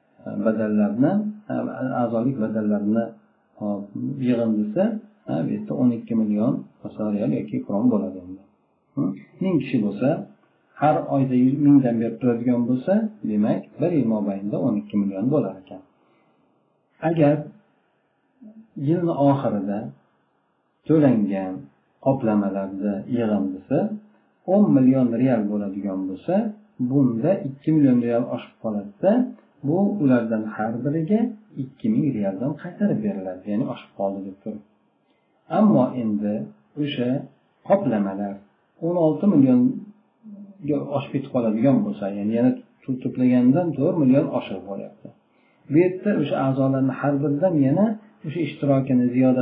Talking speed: 100 wpm